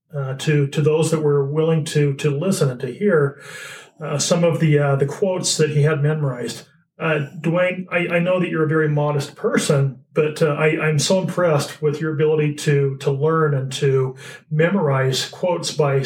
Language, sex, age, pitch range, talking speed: English, male, 40-59, 145-165 Hz, 195 wpm